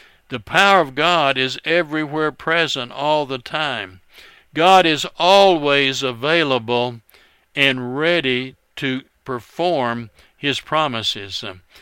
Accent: American